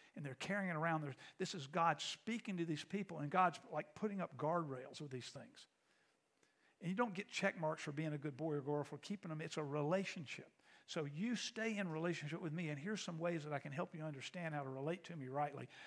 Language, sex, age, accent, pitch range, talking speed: English, male, 50-69, American, 150-195 Hz, 240 wpm